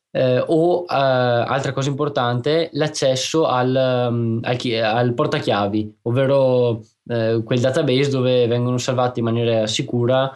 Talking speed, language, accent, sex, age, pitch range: 120 wpm, Italian, native, male, 20-39, 125-150 Hz